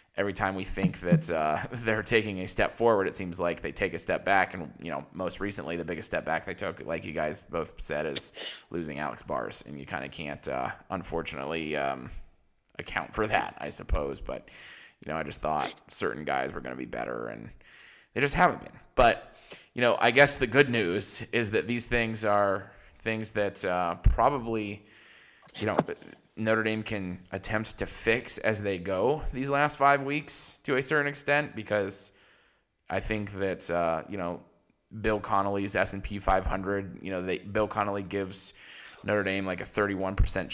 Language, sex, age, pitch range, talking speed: English, male, 20-39, 90-110 Hz, 190 wpm